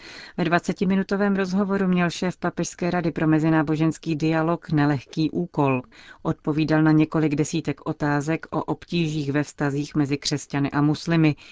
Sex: female